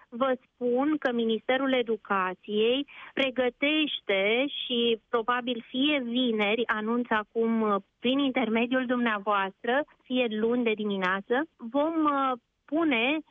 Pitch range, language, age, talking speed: 225-275 Hz, Romanian, 30-49, 95 wpm